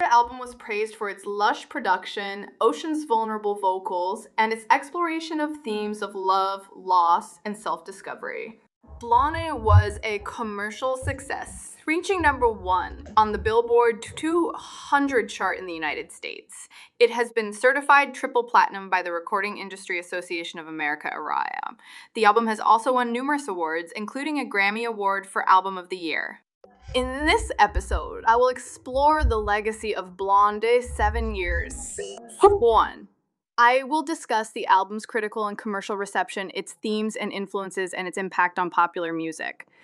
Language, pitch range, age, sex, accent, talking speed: English, 195-265 Hz, 20-39, female, American, 150 wpm